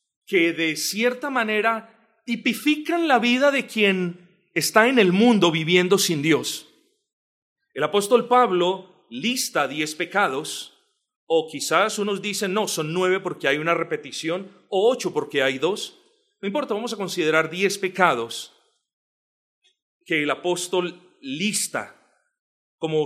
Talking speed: 130 wpm